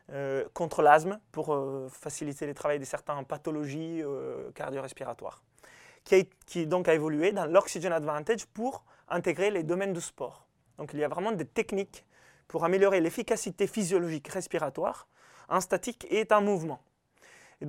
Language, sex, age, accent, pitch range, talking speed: French, male, 20-39, French, 150-195 Hz, 155 wpm